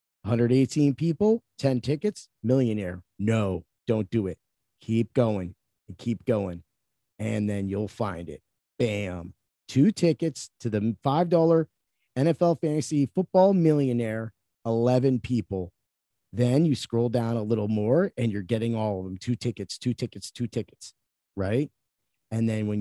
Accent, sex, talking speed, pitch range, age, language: American, male, 140 wpm, 110-145 Hz, 30-49, English